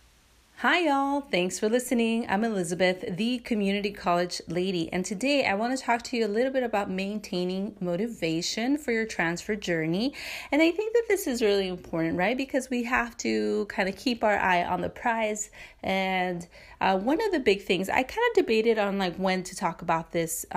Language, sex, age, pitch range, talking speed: English, female, 30-49, 180-230 Hz, 200 wpm